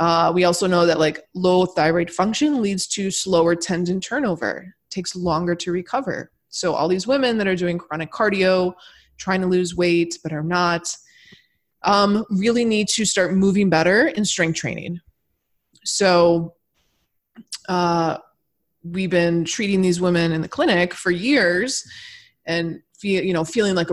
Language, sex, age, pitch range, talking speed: English, female, 20-39, 170-200 Hz, 155 wpm